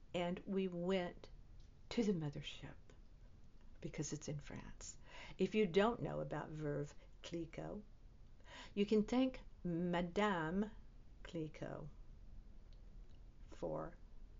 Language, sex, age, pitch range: English, female, 60-79, 155-190 Hz